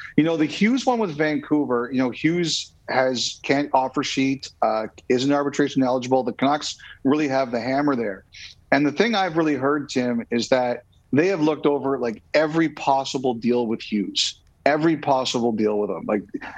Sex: male